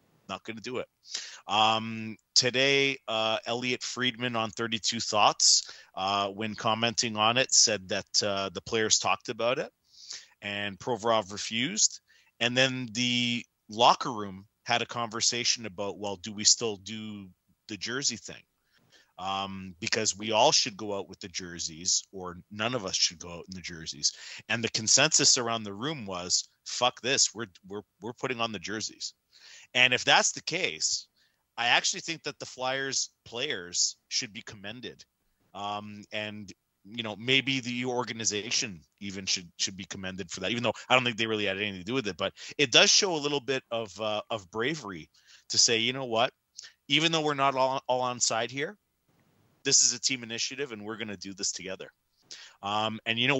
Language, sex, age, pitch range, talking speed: English, male, 30-49, 100-125 Hz, 185 wpm